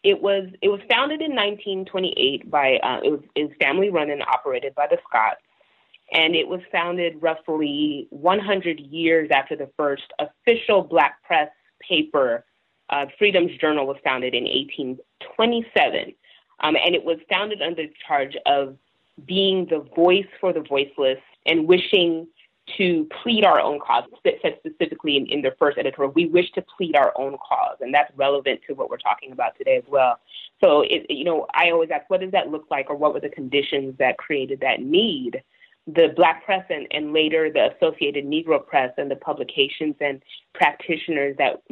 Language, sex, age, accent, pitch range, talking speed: English, female, 30-49, American, 155-230 Hz, 175 wpm